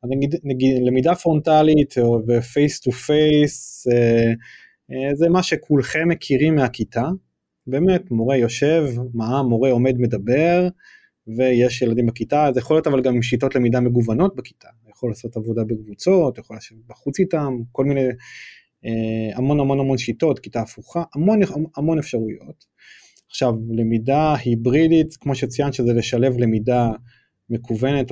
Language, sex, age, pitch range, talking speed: Hebrew, male, 20-39, 115-150 Hz, 135 wpm